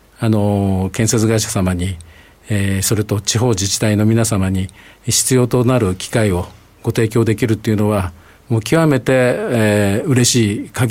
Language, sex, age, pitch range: Japanese, male, 50-69, 100-130 Hz